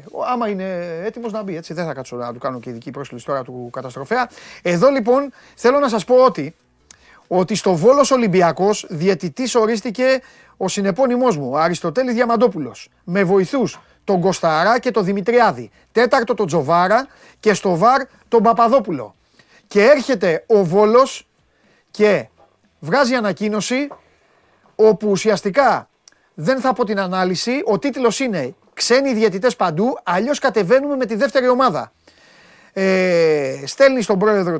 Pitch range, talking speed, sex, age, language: 170-240 Hz, 140 wpm, male, 30-49, Greek